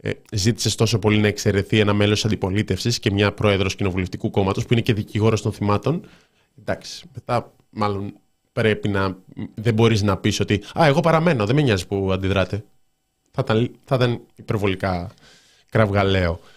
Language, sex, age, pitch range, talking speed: Greek, male, 20-39, 105-130 Hz, 150 wpm